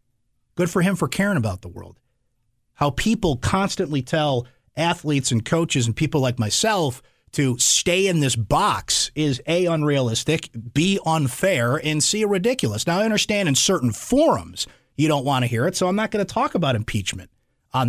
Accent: American